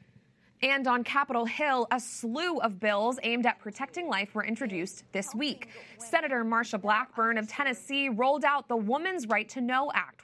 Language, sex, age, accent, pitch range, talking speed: English, female, 20-39, American, 220-275 Hz, 170 wpm